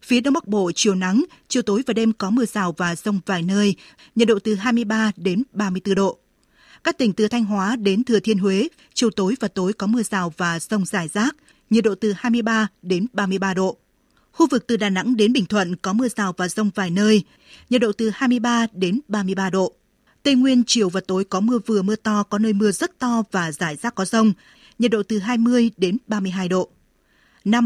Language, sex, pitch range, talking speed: Vietnamese, female, 195-235 Hz, 220 wpm